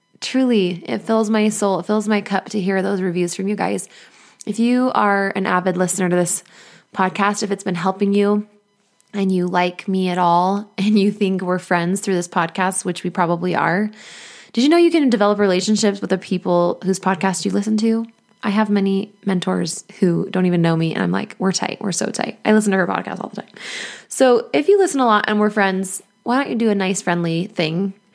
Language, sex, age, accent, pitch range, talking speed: English, female, 20-39, American, 185-220 Hz, 225 wpm